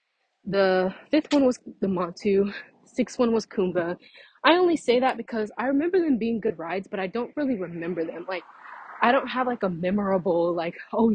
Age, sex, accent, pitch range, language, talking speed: 20-39, female, American, 185-250 Hz, English, 195 wpm